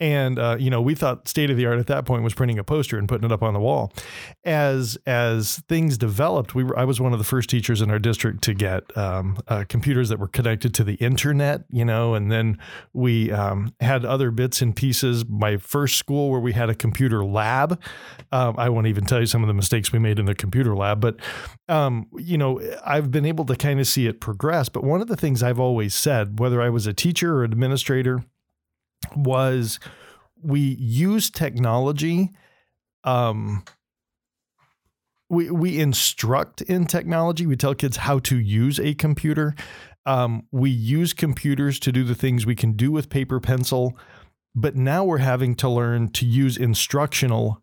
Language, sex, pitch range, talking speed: English, male, 115-140 Hz, 195 wpm